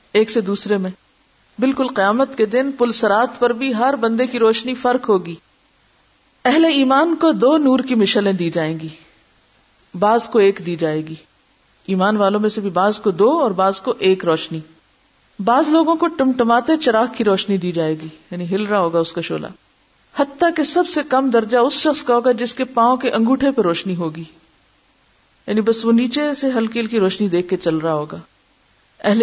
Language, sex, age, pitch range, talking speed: Urdu, female, 50-69, 175-235 Hz, 195 wpm